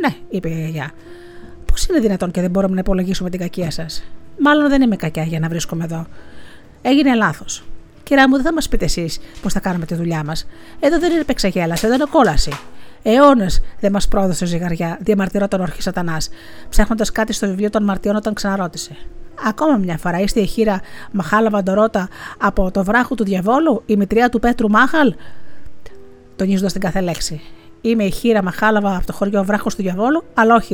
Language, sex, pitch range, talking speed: Greek, female, 180-240 Hz, 185 wpm